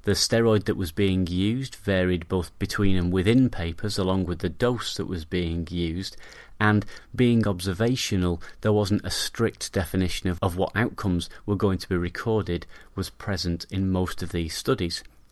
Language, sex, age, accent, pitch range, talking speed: English, male, 30-49, British, 90-105 Hz, 170 wpm